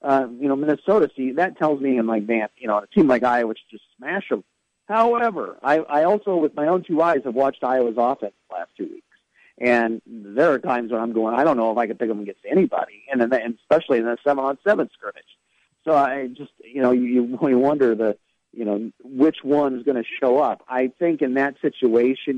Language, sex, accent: English, male, American